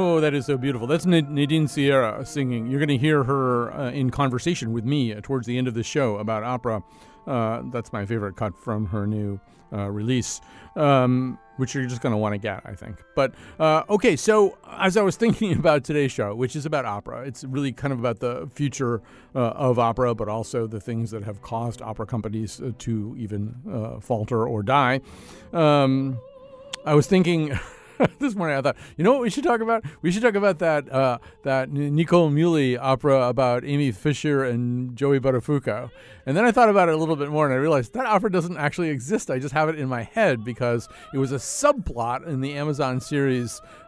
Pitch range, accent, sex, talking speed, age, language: 120-150 Hz, American, male, 210 wpm, 40-59, English